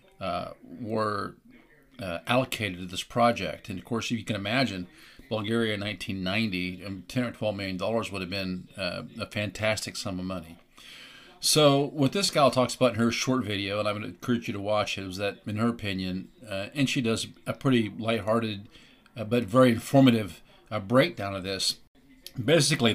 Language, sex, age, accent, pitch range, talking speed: English, male, 50-69, American, 105-125 Hz, 185 wpm